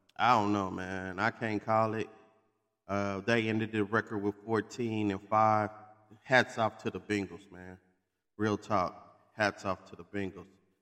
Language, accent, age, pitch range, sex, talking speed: English, American, 30-49, 95-115 Hz, male, 165 wpm